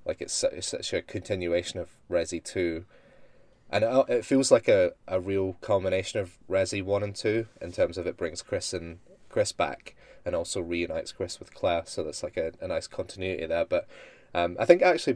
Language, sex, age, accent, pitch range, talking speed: English, male, 20-39, British, 90-105 Hz, 200 wpm